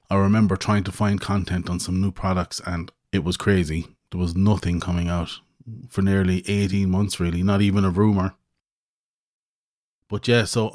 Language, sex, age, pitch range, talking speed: English, male, 30-49, 90-110 Hz, 175 wpm